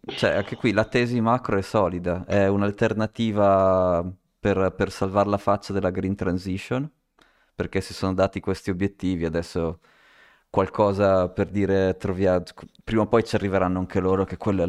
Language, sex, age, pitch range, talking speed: Italian, male, 20-39, 90-100 Hz, 155 wpm